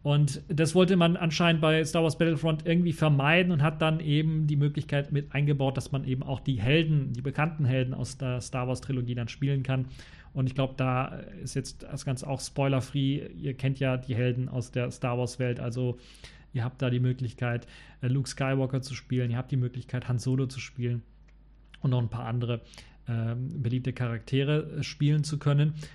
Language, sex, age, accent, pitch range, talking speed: German, male, 40-59, German, 130-155 Hz, 195 wpm